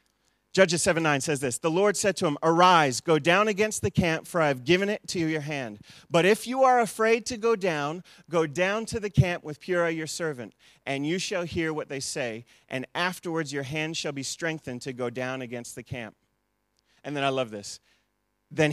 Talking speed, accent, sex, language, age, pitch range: 215 wpm, American, male, English, 30-49, 130-180 Hz